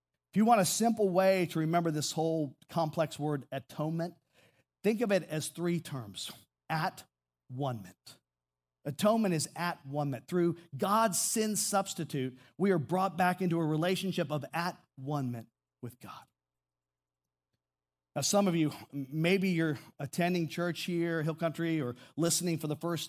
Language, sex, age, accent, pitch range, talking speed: English, male, 50-69, American, 135-175 Hz, 145 wpm